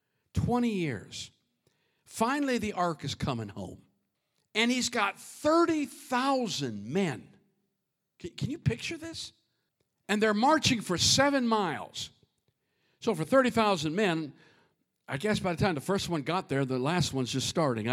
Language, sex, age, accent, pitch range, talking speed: English, male, 50-69, American, 155-240 Hz, 140 wpm